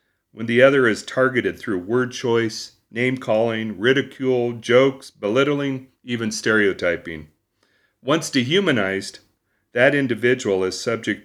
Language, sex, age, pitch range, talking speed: English, male, 40-59, 110-140 Hz, 105 wpm